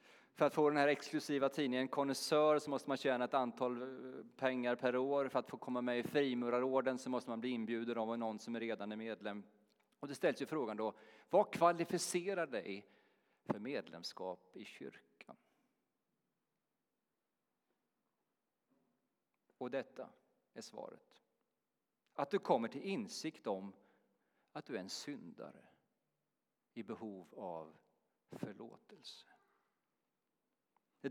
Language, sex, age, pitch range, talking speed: Swedish, male, 40-59, 125-175 Hz, 135 wpm